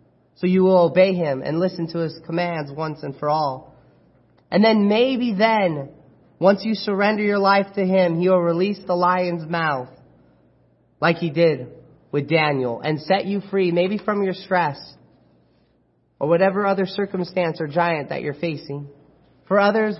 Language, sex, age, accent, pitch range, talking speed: English, male, 30-49, American, 160-195 Hz, 165 wpm